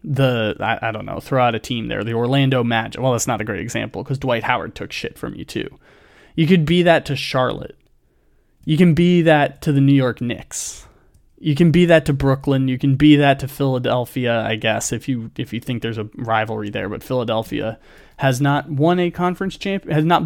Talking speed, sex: 225 wpm, male